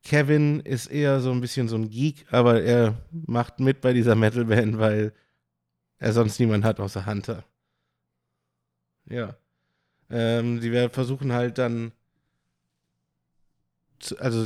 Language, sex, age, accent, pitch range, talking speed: German, male, 20-39, German, 110-130 Hz, 130 wpm